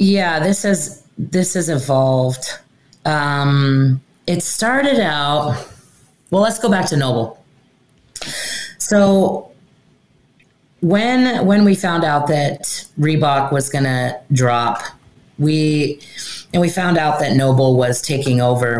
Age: 30-49